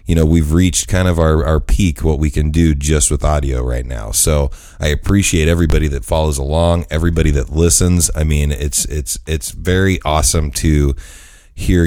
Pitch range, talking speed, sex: 70-85 Hz, 185 wpm, male